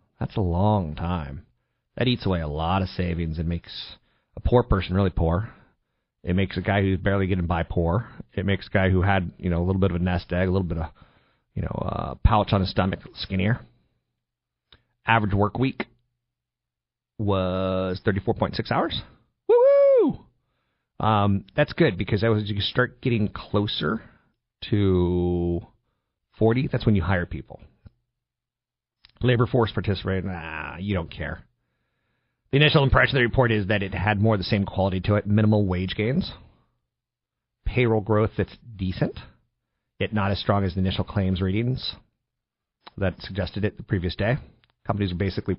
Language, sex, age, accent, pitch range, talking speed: English, male, 40-59, American, 90-110 Hz, 165 wpm